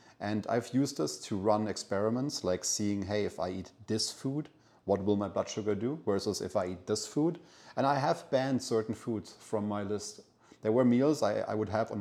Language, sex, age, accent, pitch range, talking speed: English, male, 30-49, German, 95-110 Hz, 220 wpm